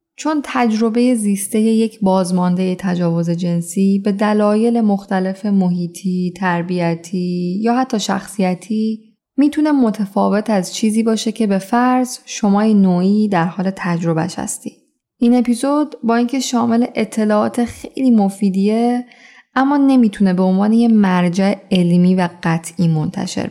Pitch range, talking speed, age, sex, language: 180-230 Hz, 125 wpm, 10-29, female, Persian